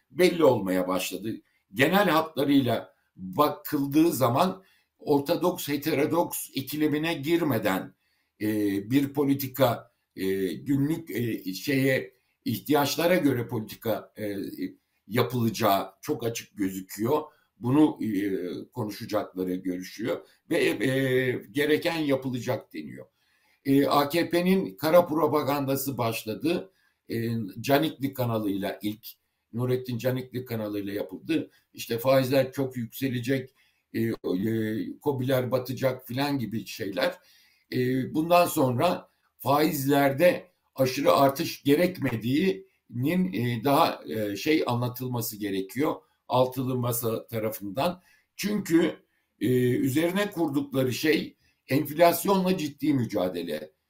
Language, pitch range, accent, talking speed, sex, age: Turkish, 115-155 Hz, native, 90 wpm, male, 60-79